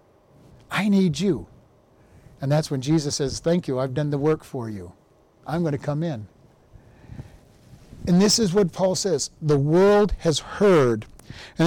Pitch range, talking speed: 145-190 Hz, 160 wpm